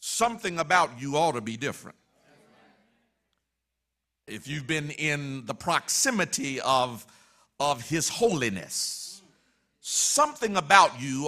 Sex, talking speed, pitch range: male, 105 wpm, 145-205 Hz